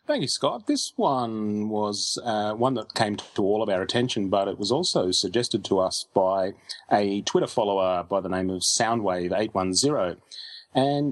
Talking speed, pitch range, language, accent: 175 wpm, 105-140 Hz, English, Australian